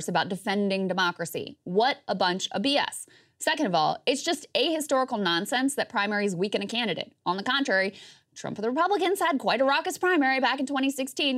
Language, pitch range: English, 195-285 Hz